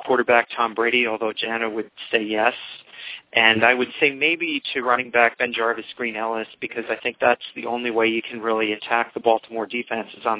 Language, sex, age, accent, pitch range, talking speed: English, male, 40-59, American, 110-125 Hz, 200 wpm